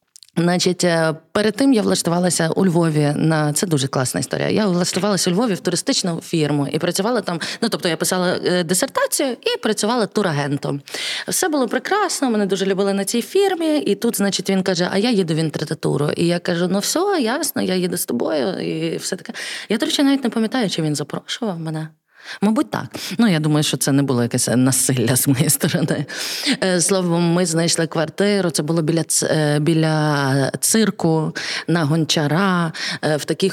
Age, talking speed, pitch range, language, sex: 20-39, 180 wpm, 155-215 Hz, Ukrainian, female